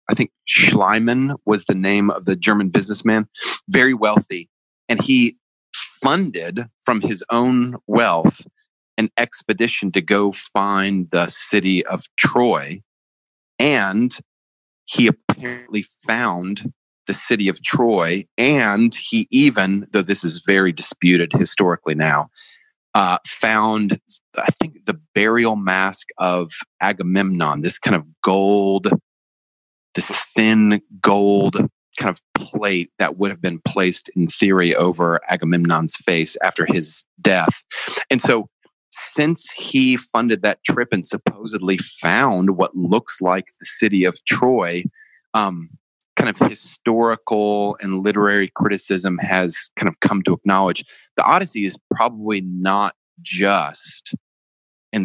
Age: 30-49